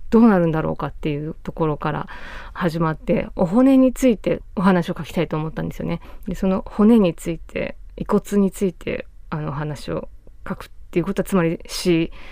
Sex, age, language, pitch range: female, 20-39, Japanese, 160-195 Hz